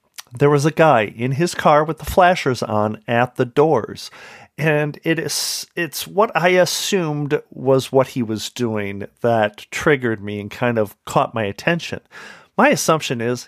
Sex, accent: male, American